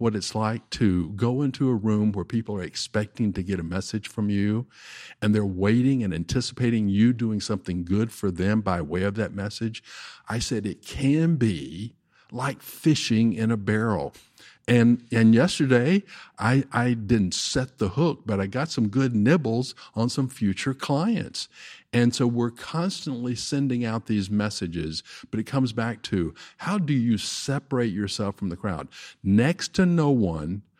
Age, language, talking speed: 50-69, English, 170 wpm